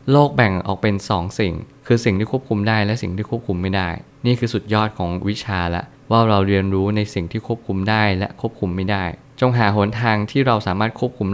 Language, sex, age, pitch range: Thai, male, 20-39, 95-120 Hz